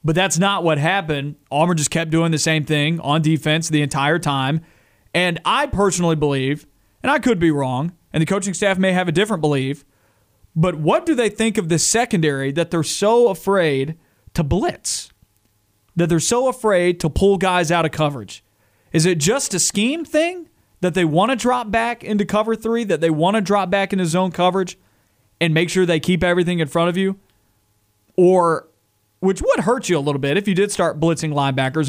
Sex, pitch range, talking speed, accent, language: male, 155-195 Hz, 200 wpm, American, English